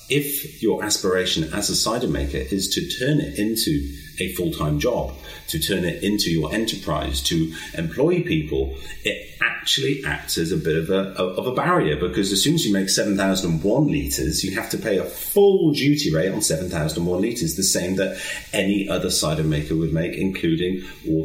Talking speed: 180 wpm